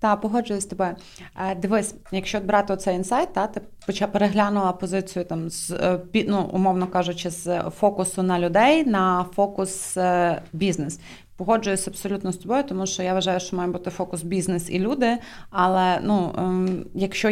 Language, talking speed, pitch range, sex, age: Ukrainian, 150 wpm, 180-210 Hz, female, 20-39